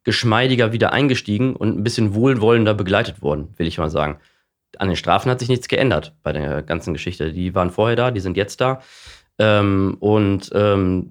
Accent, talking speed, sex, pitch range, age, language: German, 190 wpm, male, 95-115 Hz, 20-39, German